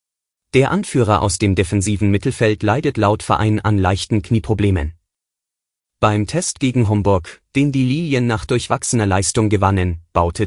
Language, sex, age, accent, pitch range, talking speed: German, male, 30-49, German, 100-125 Hz, 140 wpm